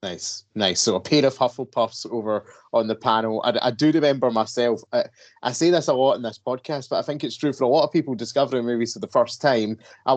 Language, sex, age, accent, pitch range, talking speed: English, male, 20-39, British, 110-130 Hz, 250 wpm